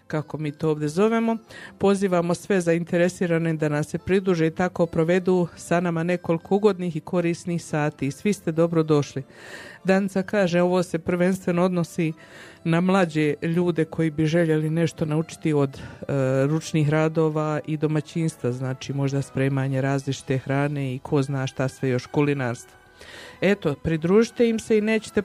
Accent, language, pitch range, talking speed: native, Croatian, 160-195 Hz, 150 wpm